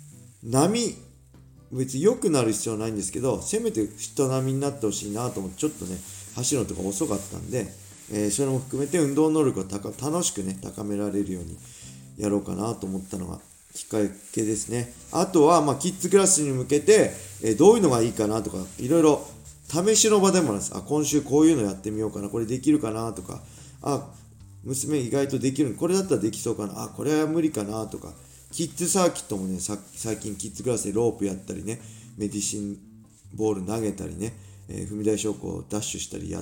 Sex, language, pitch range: male, Japanese, 100-135 Hz